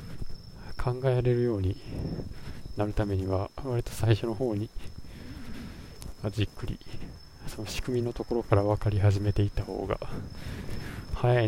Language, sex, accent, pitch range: Japanese, male, native, 100-125 Hz